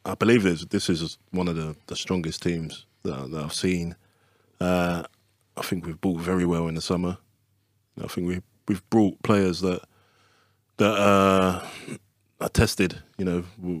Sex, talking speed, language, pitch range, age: male, 170 wpm, Hebrew, 90-105 Hz, 20-39